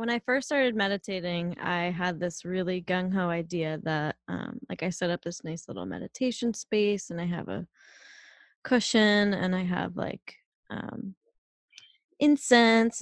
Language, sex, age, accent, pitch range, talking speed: English, female, 20-39, American, 180-215 Hz, 155 wpm